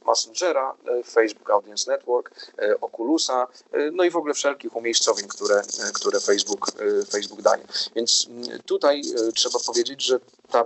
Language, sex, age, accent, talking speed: Polish, male, 30-49, native, 125 wpm